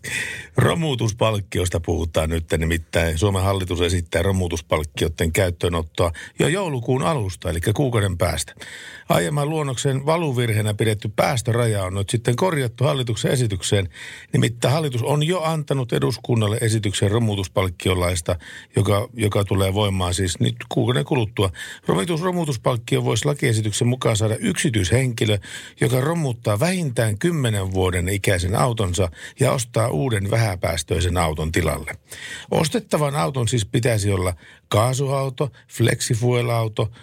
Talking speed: 110 wpm